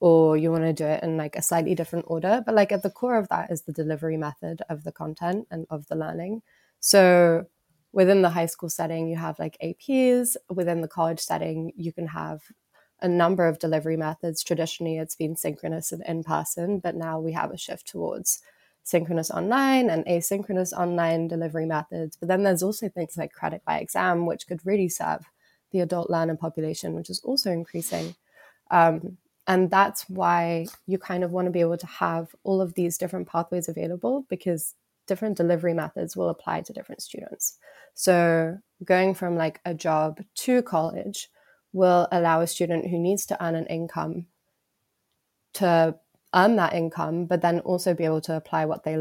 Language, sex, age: English, female, 20-39